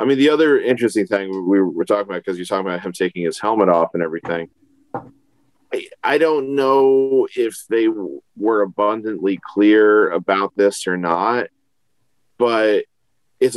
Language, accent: English, American